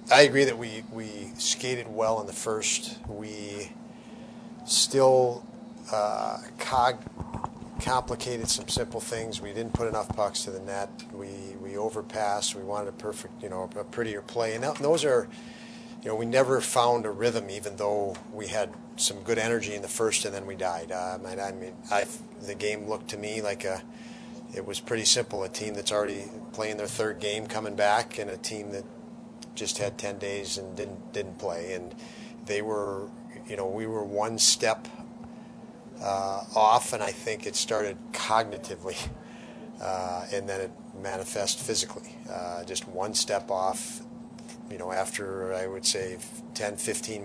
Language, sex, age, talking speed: English, male, 40-59, 175 wpm